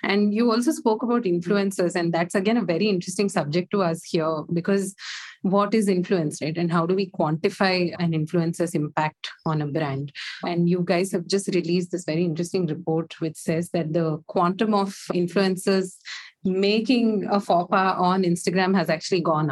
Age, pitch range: 30-49, 165-195 Hz